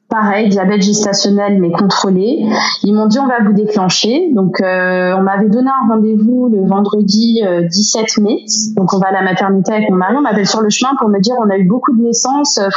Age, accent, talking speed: 20-39, French, 230 wpm